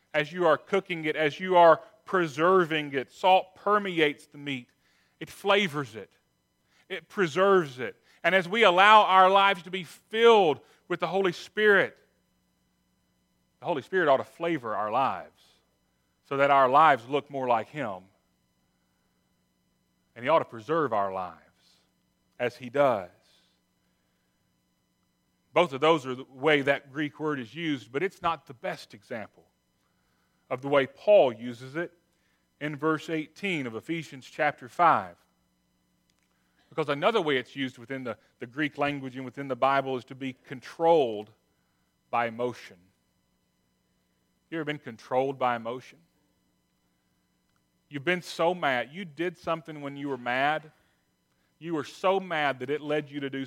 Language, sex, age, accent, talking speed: English, male, 40-59, American, 155 wpm